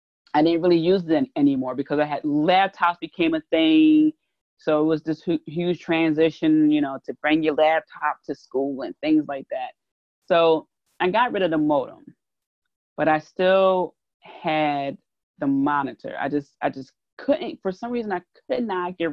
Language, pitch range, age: English, 145-185 Hz, 30-49